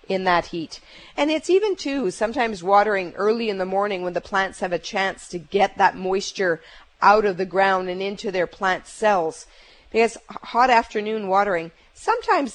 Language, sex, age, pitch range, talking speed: English, female, 40-59, 180-215 Hz, 175 wpm